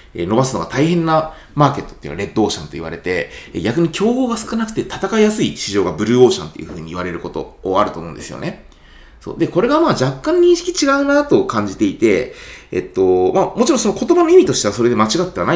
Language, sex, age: Japanese, male, 20-39